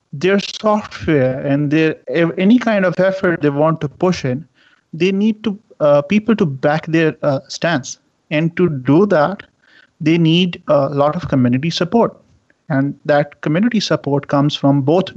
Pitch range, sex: 140-180 Hz, male